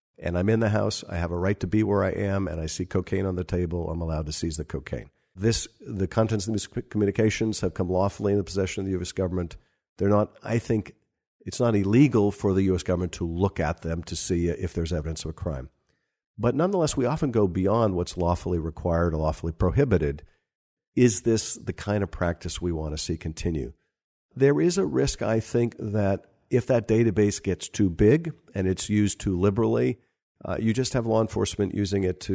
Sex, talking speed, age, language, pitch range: male, 220 wpm, 50-69, English, 85-105 Hz